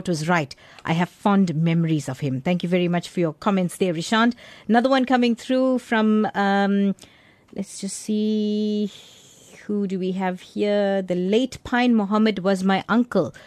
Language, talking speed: English, 170 wpm